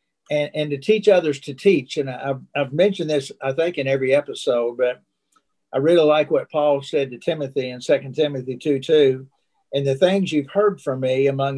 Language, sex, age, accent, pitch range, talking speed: English, male, 60-79, American, 135-160 Hz, 200 wpm